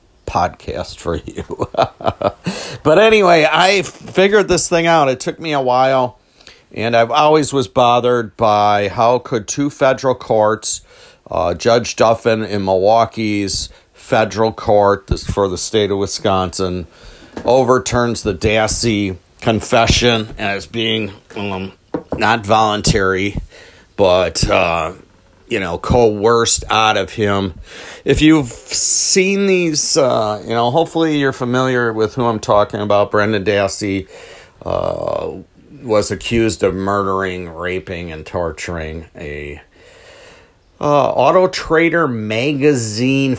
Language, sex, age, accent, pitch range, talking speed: English, male, 50-69, American, 95-130 Hz, 120 wpm